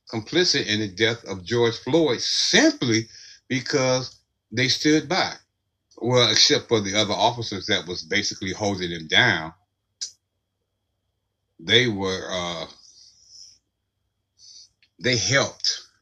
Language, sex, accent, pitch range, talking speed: English, male, American, 95-110 Hz, 110 wpm